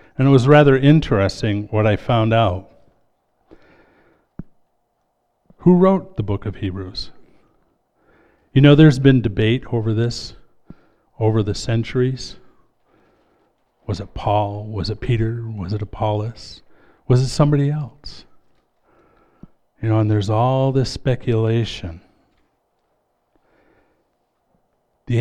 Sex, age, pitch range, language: male, 50-69, 105-135 Hz, English